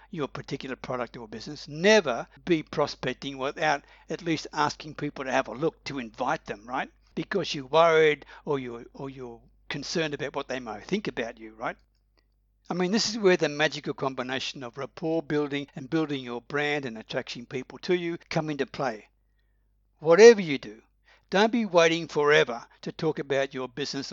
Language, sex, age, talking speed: English, male, 60-79, 175 wpm